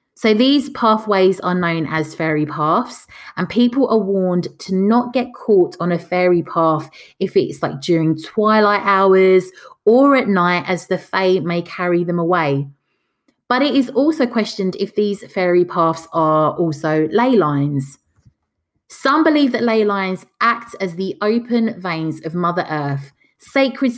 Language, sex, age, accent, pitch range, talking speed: English, female, 20-39, British, 170-230 Hz, 160 wpm